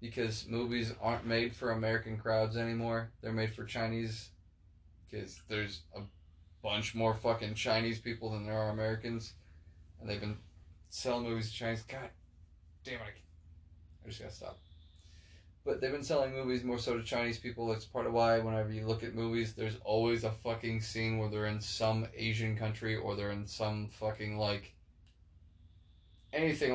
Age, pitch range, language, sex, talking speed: 20-39, 95-115 Hz, English, male, 170 wpm